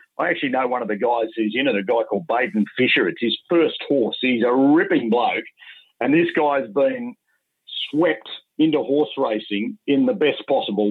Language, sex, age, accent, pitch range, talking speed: English, male, 50-69, Australian, 120-175 Hz, 195 wpm